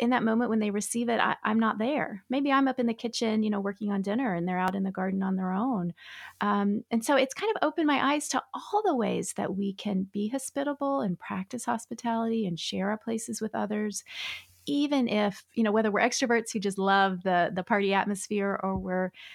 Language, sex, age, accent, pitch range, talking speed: English, female, 30-49, American, 190-235 Hz, 230 wpm